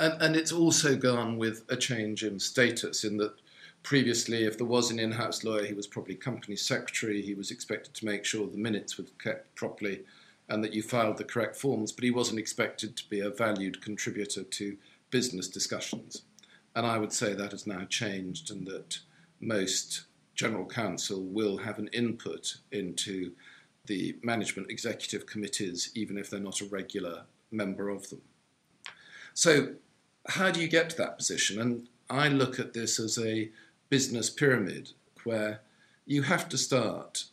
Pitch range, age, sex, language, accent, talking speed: 105-125 Hz, 50-69, male, English, British, 170 wpm